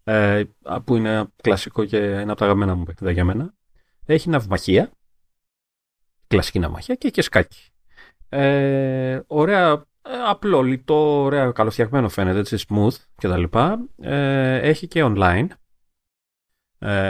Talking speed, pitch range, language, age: 115 wpm, 95-135 Hz, Greek, 30-49